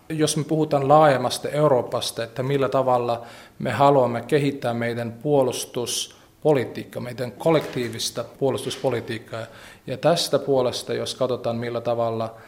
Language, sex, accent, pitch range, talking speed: Finnish, male, native, 115-130 Hz, 110 wpm